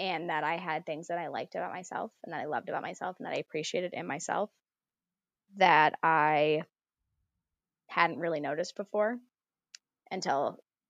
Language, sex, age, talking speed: English, female, 20-39, 160 wpm